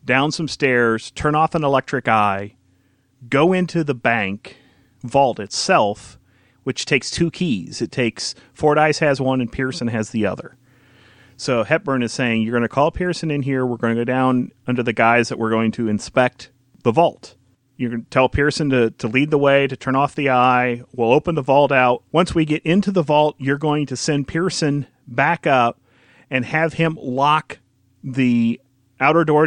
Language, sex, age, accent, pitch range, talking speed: English, male, 40-59, American, 120-145 Hz, 190 wpm